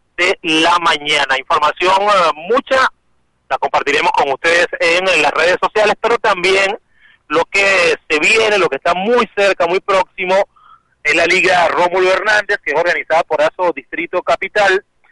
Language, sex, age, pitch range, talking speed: Spanish, male, 30-49, 160-205 Hz, 150 wpm